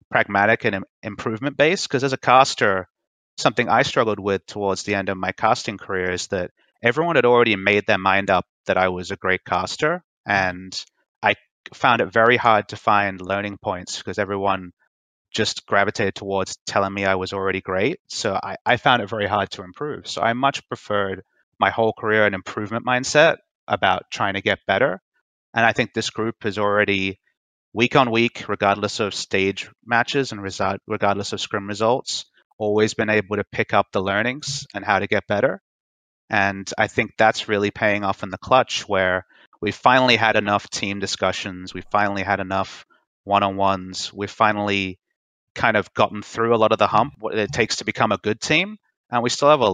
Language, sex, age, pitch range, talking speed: English, male, 30-49, 95-110 Hz, 190 wpm